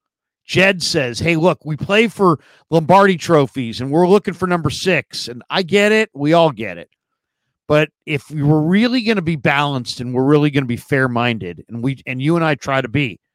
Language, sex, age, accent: English, male, 50-69, American